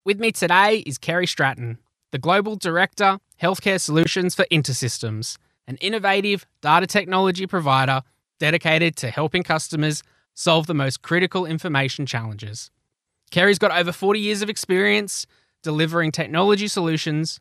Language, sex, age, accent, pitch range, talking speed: English, male, 20-39, Australian, 135-185 Hz, 130 wpm